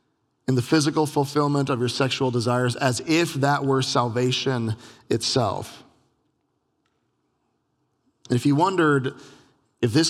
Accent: American